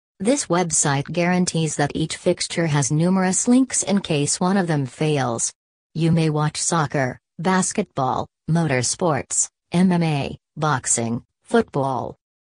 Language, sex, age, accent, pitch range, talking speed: English, female, 40-59, American, 145-180 Hz, 115 wpm